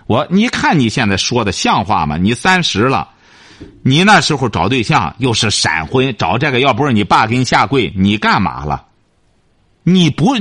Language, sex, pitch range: Chinese, male, 90-155 Hz